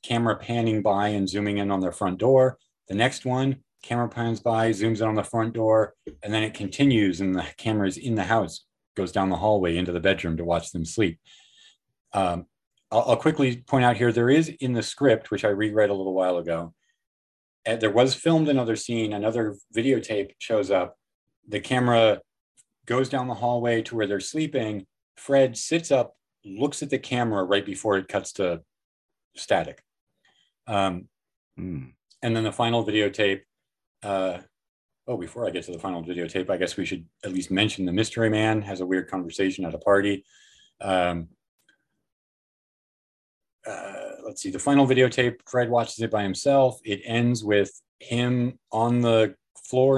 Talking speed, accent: 175 wpm, American